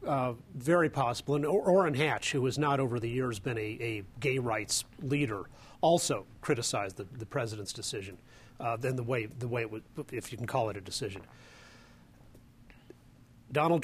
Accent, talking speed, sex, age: American, 180 wpm, male, 40-59